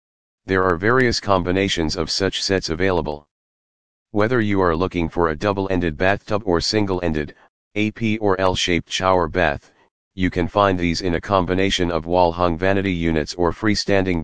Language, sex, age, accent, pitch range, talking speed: English, male, 40-59, American, 85-100 Hz, 150 wpm